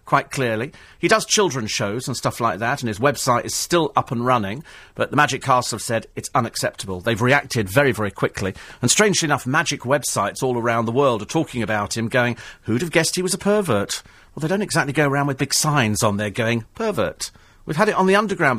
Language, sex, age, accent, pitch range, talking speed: English, male, 40-59, British, 110-165 Hz, 230 wpm